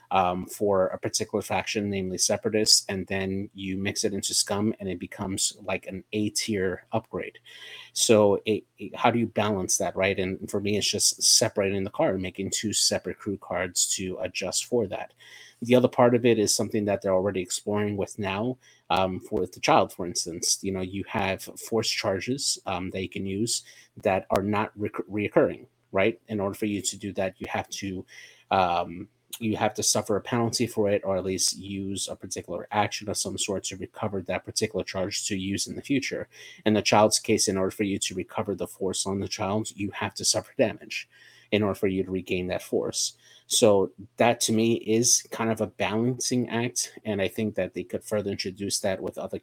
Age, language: 30-49, English